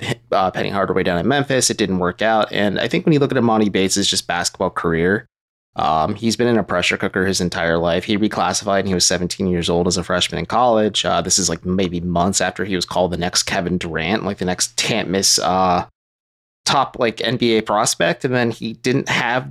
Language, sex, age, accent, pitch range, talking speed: English, male, 30-49, American, 95-115 Hz, 225 wpm